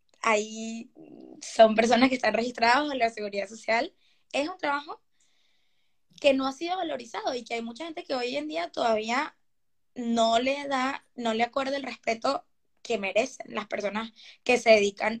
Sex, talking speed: female, 170 wpm